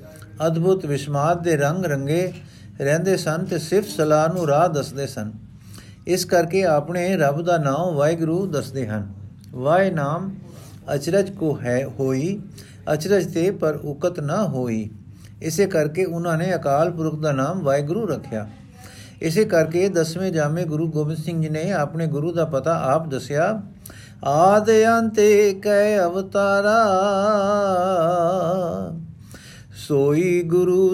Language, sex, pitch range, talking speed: Punjabi, male, 145-195 Hz, 120 wpm